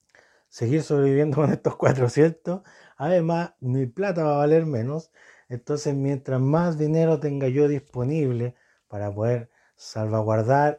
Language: Spanish